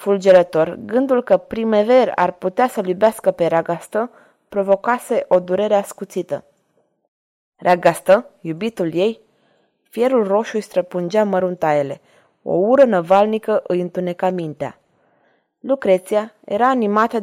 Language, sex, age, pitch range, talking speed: Romanian, female, 20-39, 180-220 Hz, 110 wpm